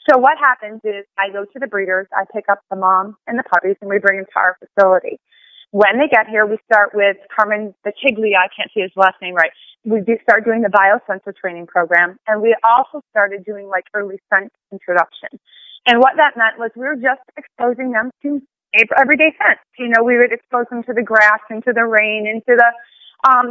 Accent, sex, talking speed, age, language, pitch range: American, female, 220 wpm, 30-49, English, 200-255 Hz